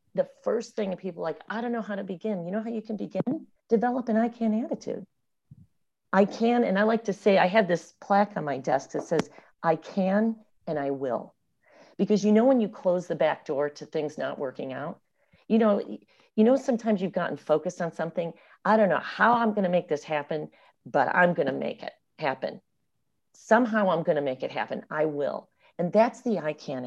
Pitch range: 155-220 Hz